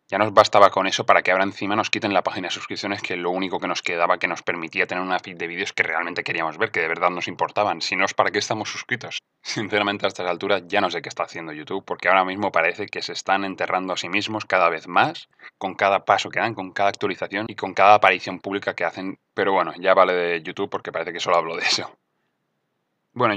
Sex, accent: male, Spanish